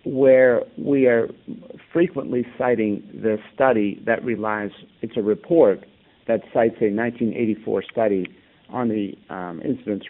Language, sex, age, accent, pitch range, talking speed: English, male, 50-69, American, 100-125 Hz, 125 wpm